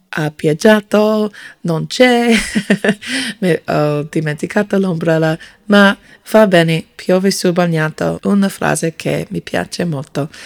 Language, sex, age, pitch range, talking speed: Italian, female, 20-39, 165-220 Hz, 110 wpm